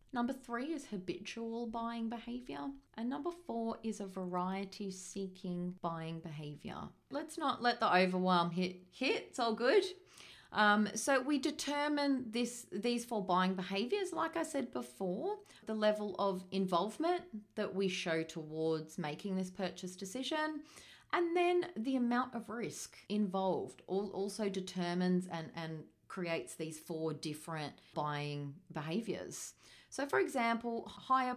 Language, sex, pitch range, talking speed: English, female, 170-235 Hz, 135 wpm